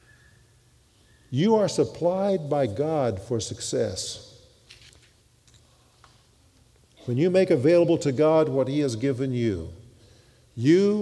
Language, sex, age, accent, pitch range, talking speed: English, male, 50-69, American, 115-155 Hz, 105 wpm